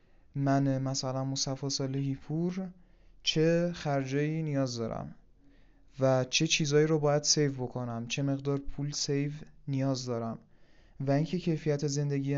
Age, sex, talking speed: 30-49, male, 125 wpm